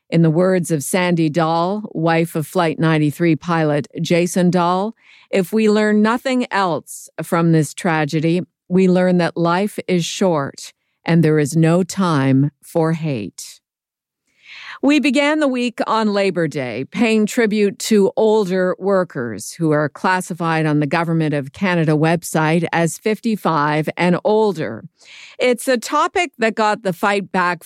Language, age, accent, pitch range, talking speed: English, 50-69, American, 165-210 Hz, 145 wpm